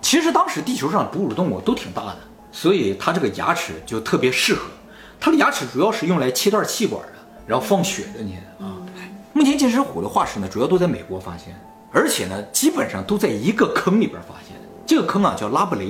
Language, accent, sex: Chinese, native, male